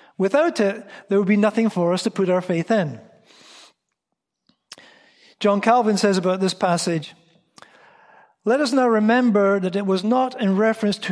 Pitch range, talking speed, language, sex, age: 175-225 Hz, 160 wpm, English, male, 40-59